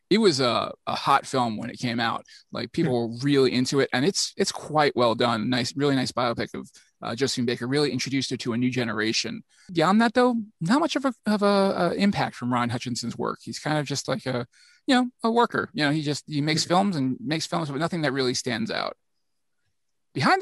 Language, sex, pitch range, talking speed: English, male, 125-185 Hz, 230 wpm